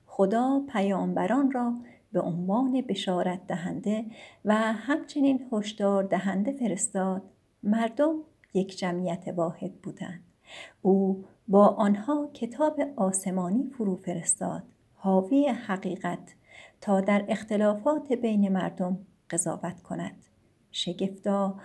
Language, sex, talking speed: Persian, female, 95 wpm